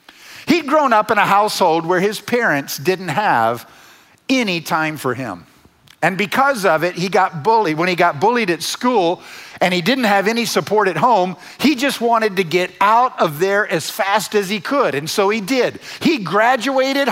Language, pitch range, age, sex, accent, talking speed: English, 175-250 Hz, 50-69, male, American, 195 wpm